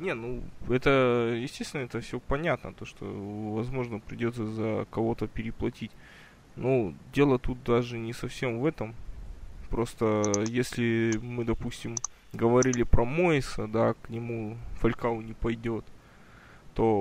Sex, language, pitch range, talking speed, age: male, Russian, 110-130 Hz, 125 wpm, 20-39